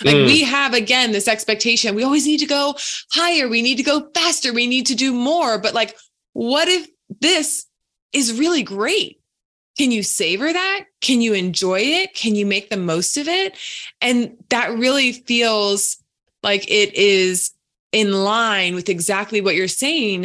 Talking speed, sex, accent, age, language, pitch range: 175 wpm, female, American, 20-39, English, 195-260 Hz